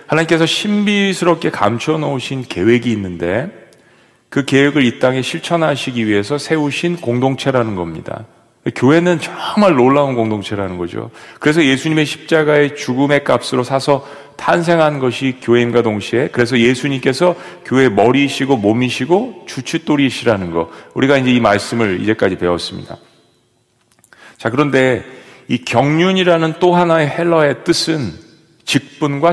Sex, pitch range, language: male, 115-160 Hz, Korean